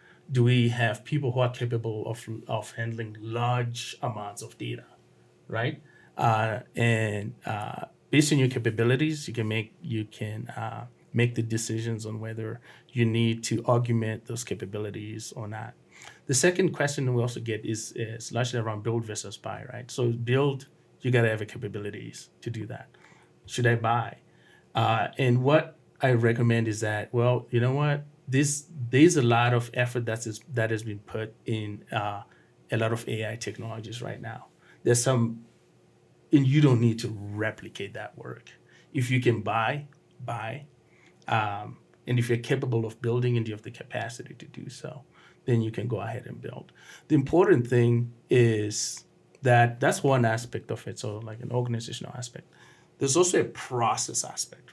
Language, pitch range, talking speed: English, 110-125 Hz, 170 wpm